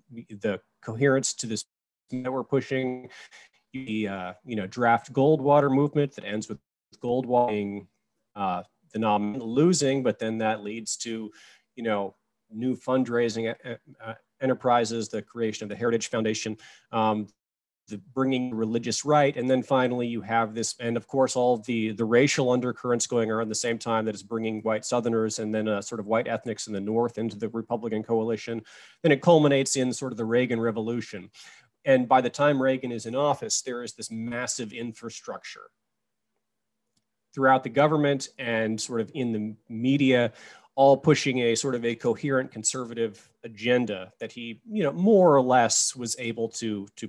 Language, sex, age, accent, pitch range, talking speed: English, male, 30-49, American, 110-135 Hz, 170 wpm